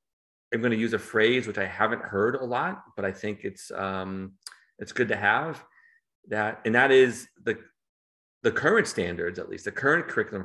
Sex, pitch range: male, 100-120 Hz